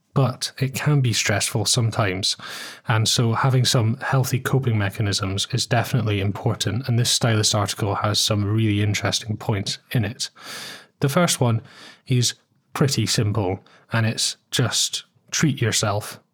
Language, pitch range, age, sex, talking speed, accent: English, 105-130 Hz, 20-39, male, 140 wpm, British